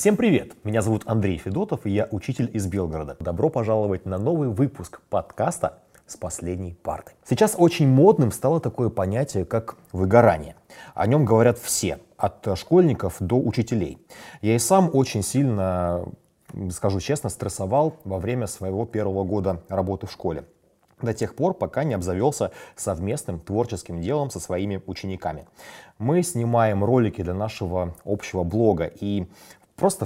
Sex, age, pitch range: male, 30-49, 95-125 Hz